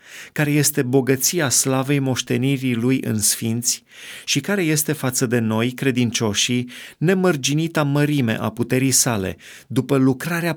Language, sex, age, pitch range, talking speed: Romanian, male, 30-49, 115-145 Hz, 125 wpm